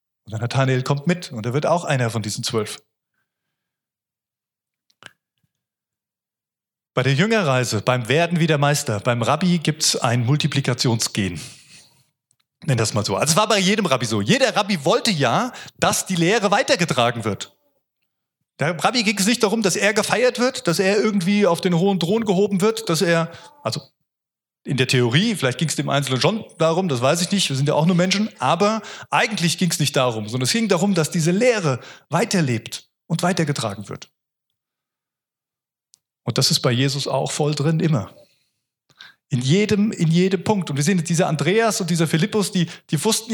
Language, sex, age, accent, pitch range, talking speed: German, male, 30-49, German, 130-195 Hz, 180 wpm